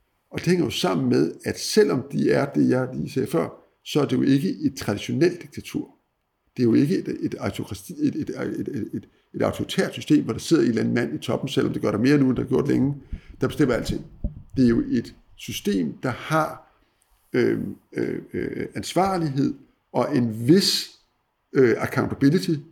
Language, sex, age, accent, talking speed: Danish, male, 60-79, native, 195 wpm